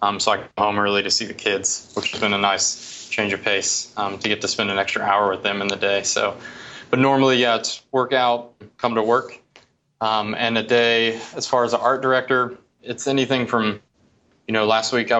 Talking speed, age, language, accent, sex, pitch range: 235 wpm, 20-39, English, American, male, 105-115 Hz